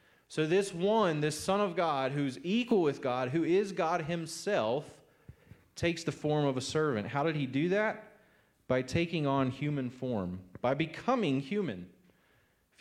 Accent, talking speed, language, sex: American, 165 wpm, English, male